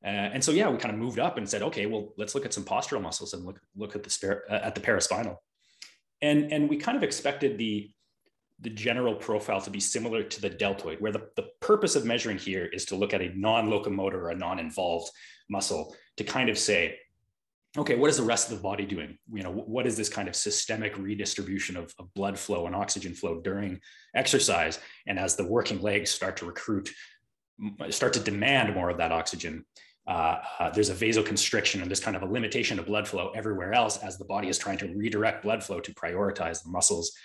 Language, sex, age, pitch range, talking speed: French, male, 30-49, 100-140 Hz, 225 wpm